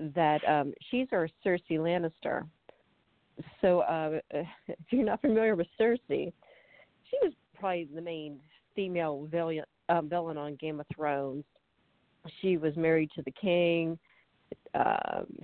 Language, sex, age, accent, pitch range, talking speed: English, female, 40-59, American, 150-190 Hz, 130 wpm